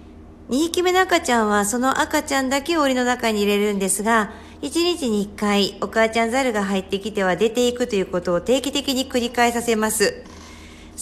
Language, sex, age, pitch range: Japanese, female, 50-69, 180-265 Hz